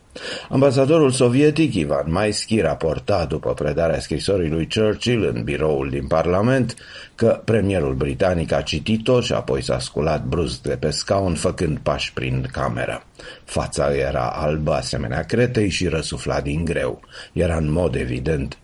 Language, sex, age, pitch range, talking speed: Romanian, male, 50-69, 75-95 Hz, 140 wpm